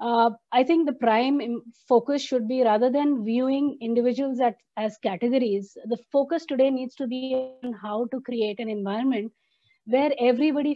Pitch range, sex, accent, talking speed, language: 230-280 Hz, female, Indian, 155 wpm, English